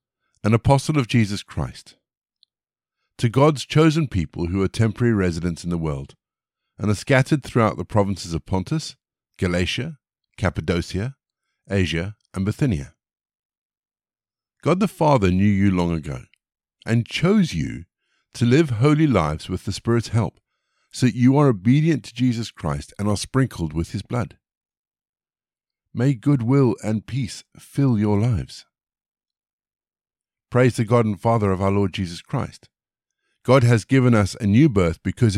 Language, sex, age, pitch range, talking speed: English, male, 50-69, 95-130 Hz, 145 wpm